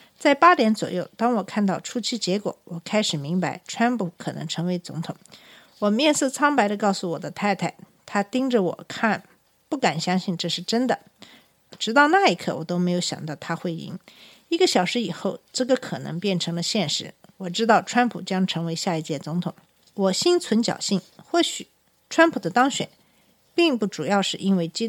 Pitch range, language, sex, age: 175-240 Hz, Chinese, female, 50-69